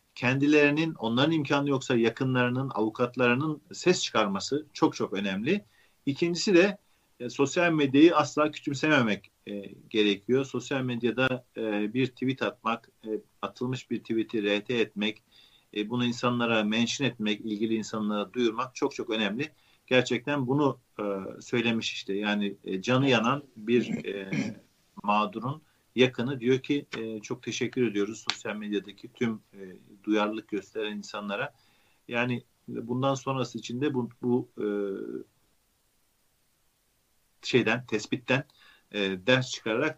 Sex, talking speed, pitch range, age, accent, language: male, 110 wpm, 110-135 Hz, 40-59, native, Turkish